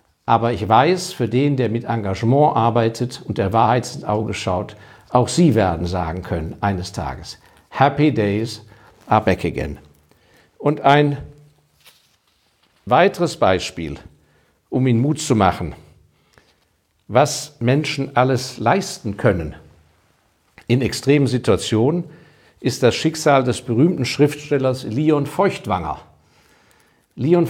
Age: 50-69